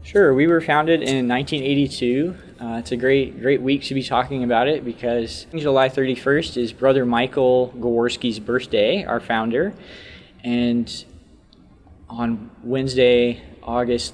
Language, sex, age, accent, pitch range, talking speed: English, male, 20-39, American, 115-145 Hz, 130 wpm